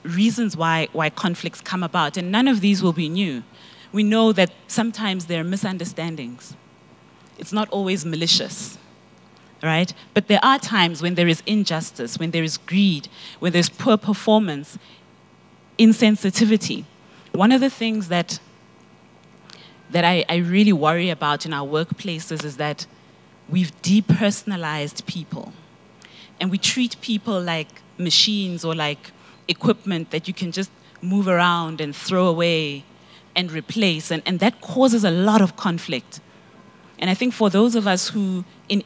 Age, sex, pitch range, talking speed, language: 30-49, female, 170-210 Hz, 150 wpm, English